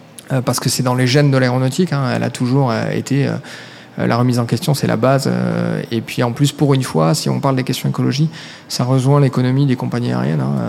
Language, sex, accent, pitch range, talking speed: French, male, French, 125-145 Hz, 225 wpm